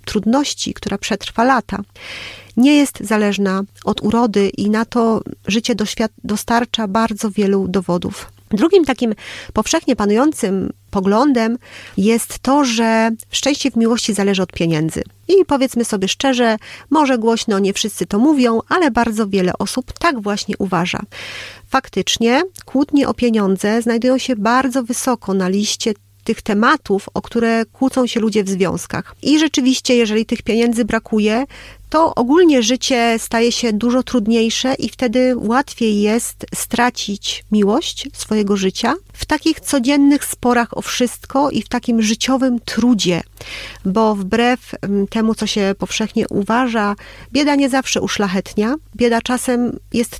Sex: female